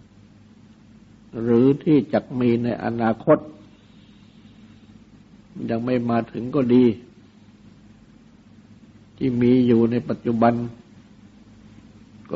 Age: 60-79